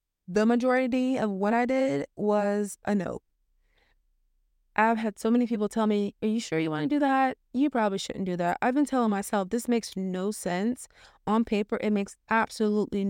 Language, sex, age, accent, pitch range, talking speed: English, female, 20-39, American, 200-245 Hz, 190 wpm